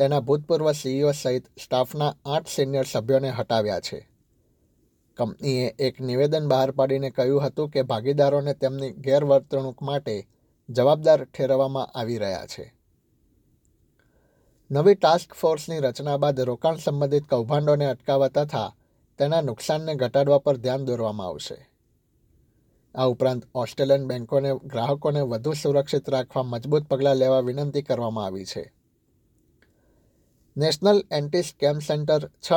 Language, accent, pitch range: Gujarati, native, 130-145 Hz